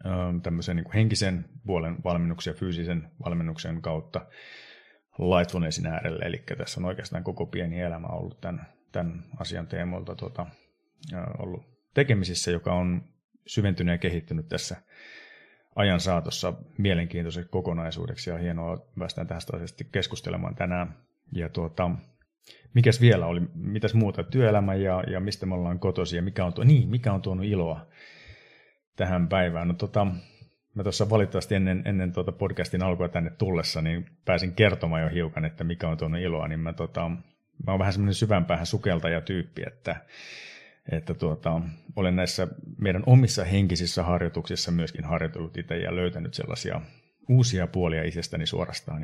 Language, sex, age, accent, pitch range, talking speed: Finnish, male, 30-49, native, 85-100 Hz, 145 wpm